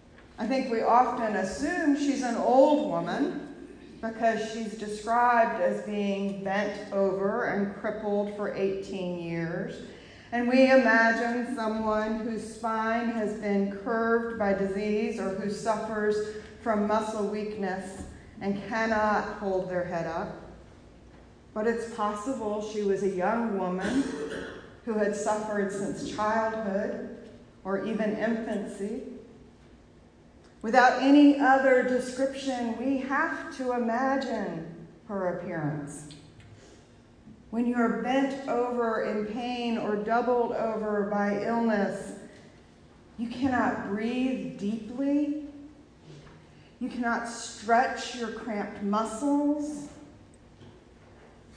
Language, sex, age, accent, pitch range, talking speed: English, female, 40-59, American, 200-245 Hz, 105 wpm